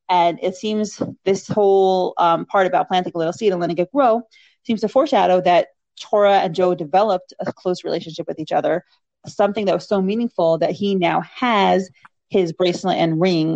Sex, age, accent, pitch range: female, 30-49, American, 165-195 Hz